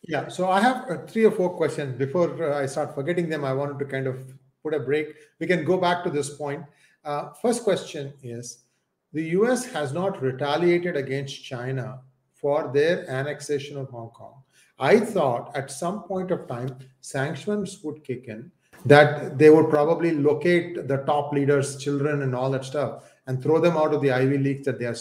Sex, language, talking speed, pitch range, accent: male, English, 190 wpm, 135-185 Hz, Indian